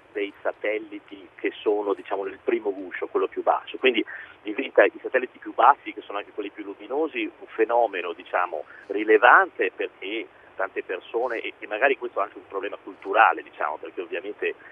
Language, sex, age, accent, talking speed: Italian, male, 40-59, native, 165 wpm